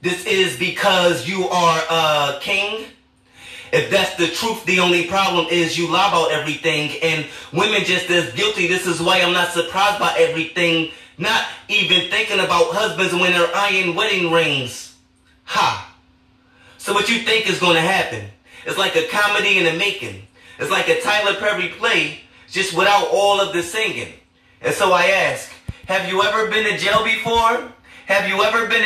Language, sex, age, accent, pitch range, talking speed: English, male, 30-49, American, 155-200 Hz, 180 wpm